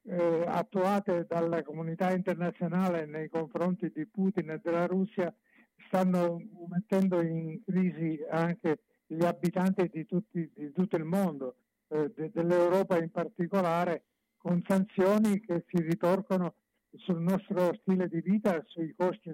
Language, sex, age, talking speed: Italian, male, 60-79, 125 wpm